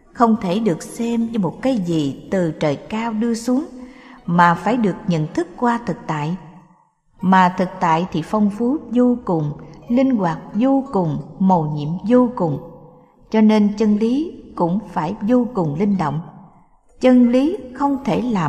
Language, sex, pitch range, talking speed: Vietnamese, female, 170-240 Hz, 170 wpm